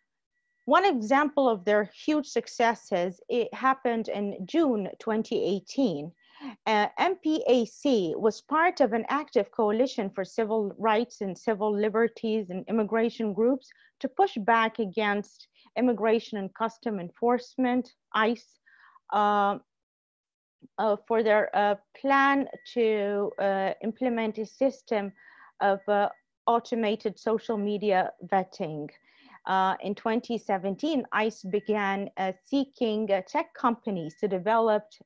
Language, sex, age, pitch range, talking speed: English, female, 30-49, 200-245 Hz, 110 wpm